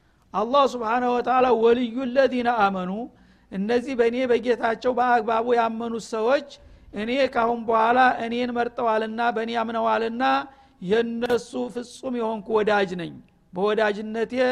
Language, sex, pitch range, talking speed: Amharic, male, 215-250 Hz, 110 wpm